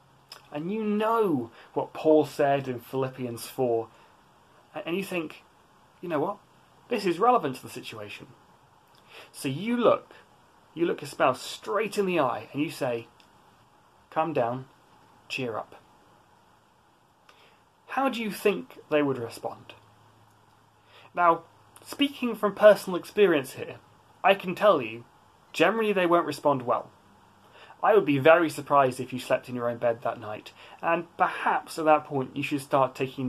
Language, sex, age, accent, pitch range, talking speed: English, male, 30-49, British, 125-175 Hz, 150 wpm